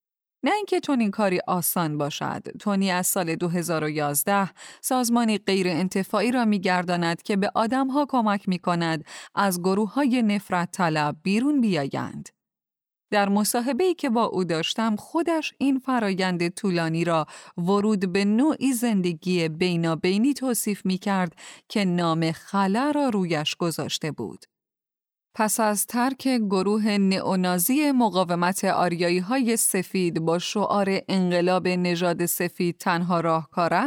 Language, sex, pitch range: Persian, female, 175-235 Hz